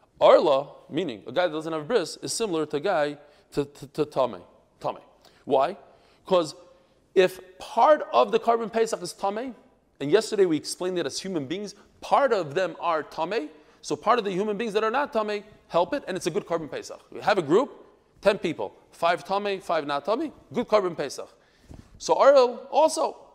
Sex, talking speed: male, 200 wpm